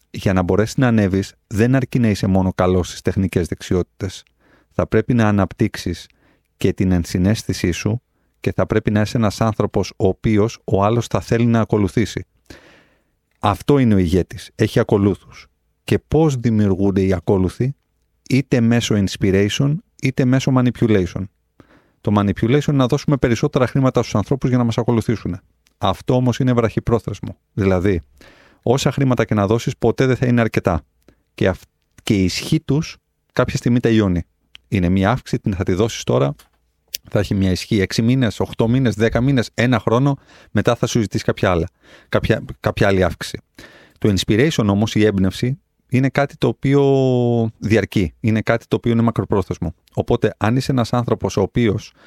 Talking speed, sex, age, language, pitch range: 165 wpm, male, 30-49, Greek, 95-120 Hz